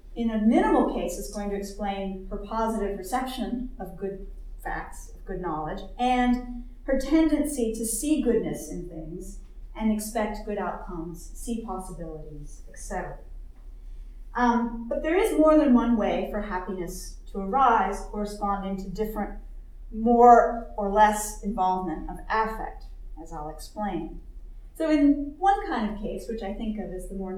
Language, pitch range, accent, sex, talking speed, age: English, 190-245 Hz, American, female, 150 wpm, 40-59